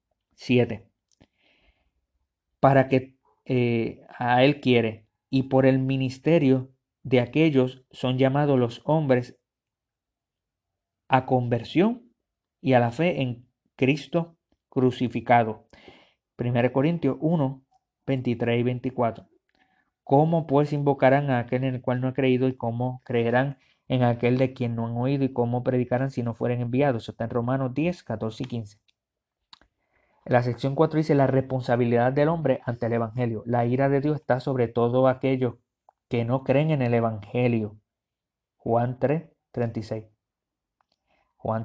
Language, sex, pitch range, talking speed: Spanish, male, 115-135 Hz, 140 wpm